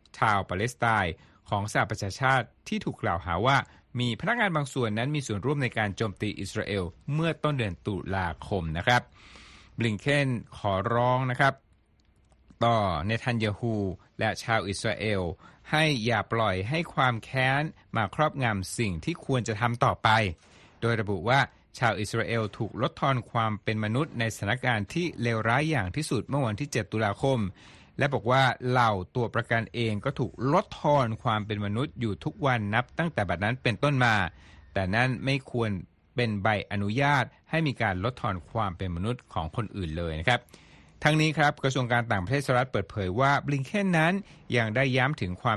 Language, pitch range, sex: Thai, 100-135 Hz, male